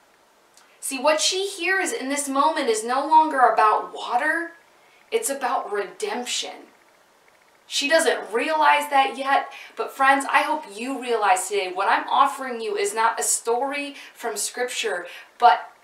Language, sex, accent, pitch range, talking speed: English, female, American, 230-315 Hz, 145 wpm